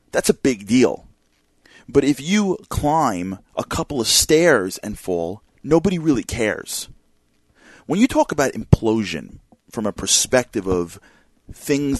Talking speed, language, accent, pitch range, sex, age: 135 wpm, English, American, 130-210 Hz, male, 30-49